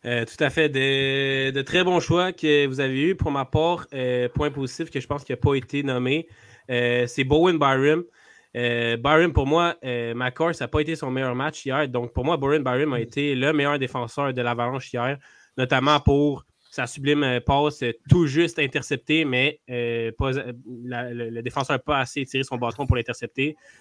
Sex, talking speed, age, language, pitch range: male, 205 wpm, 20-39, French, 125-150 Hz